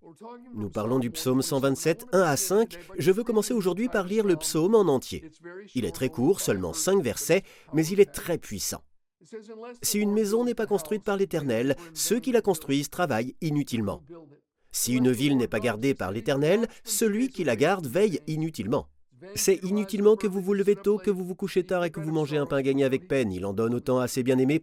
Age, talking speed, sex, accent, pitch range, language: 40-59, 210 wpm, male, French, 135-200 Hz, French